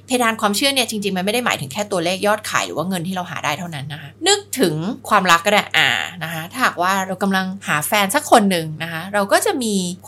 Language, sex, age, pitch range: Thai, female, 20-39, 170-240 Hz